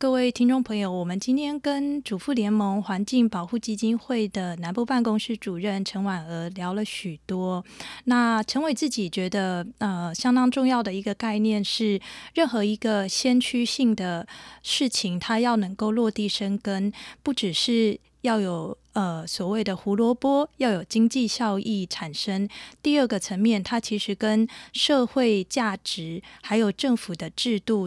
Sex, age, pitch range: female, 20-39, 195-245 Hz